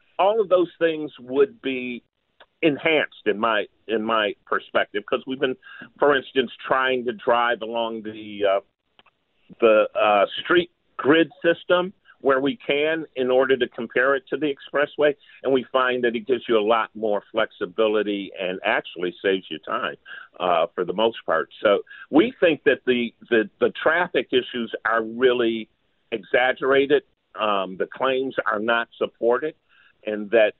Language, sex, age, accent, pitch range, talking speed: English, male, 50-69, American, 115-150 Hz, 155 wpm